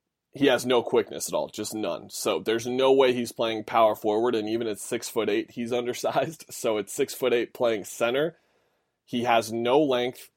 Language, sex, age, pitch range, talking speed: English, male, 20-39, 110-125 Hz, 205 wpm